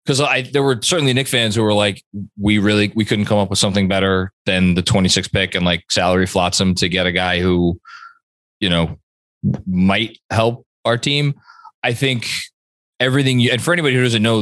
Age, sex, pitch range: 20-39, male, 105-135 Hz